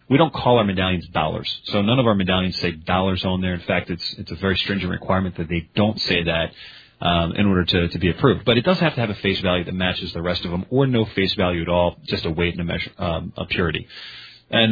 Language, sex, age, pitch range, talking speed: English, male, 30-49, 90-115 Hz, 270 wpm